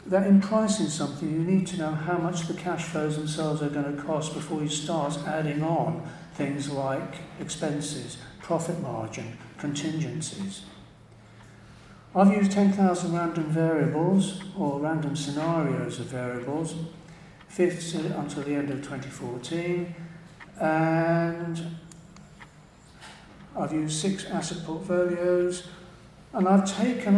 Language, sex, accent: English, male, British